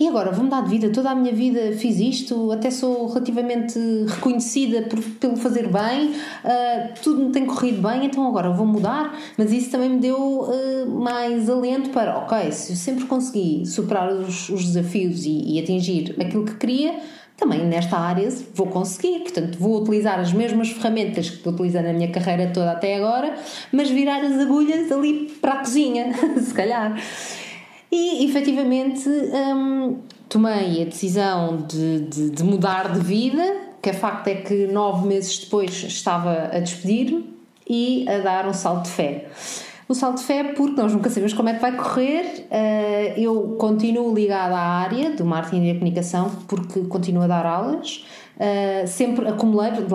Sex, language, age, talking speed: female, Portuguese, 20-39, 170 wpm